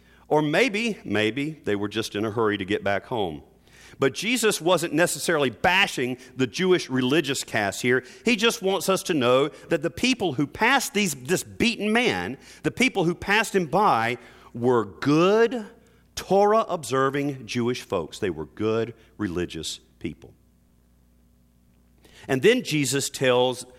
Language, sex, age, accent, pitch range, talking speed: English, male, 40-59, American, 120-190 Hz, 145 wpm